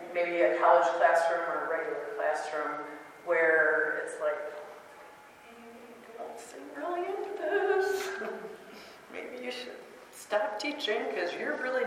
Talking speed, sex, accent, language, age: 125 wpm, female, American, English, 40-59